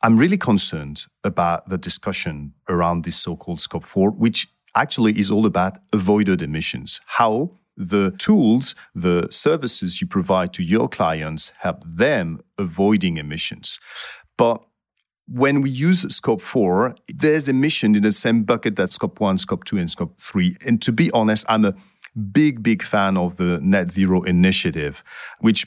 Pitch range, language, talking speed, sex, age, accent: 95-145 Hz, English, 155 wpm, male, 40-59, French